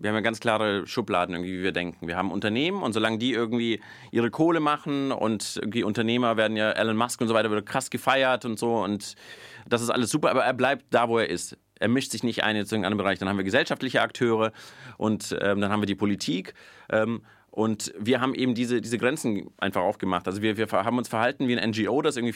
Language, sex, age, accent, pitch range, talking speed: German, male, 30-49, German, 110-125 Hz, 240 wpm